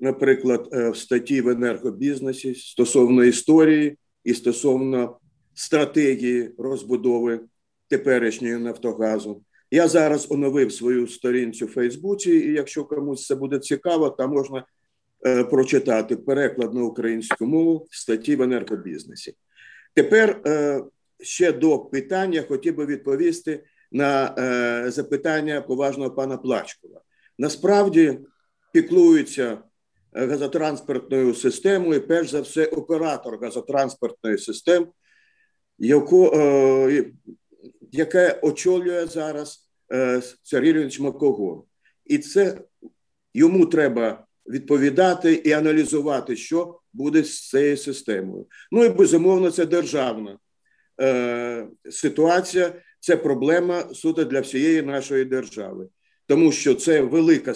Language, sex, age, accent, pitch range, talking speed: Ukrainian, male, 50-69, native, 125-170 Hz, 100 wpm